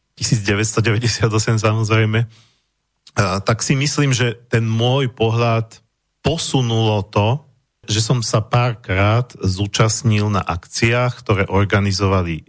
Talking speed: 100 wpm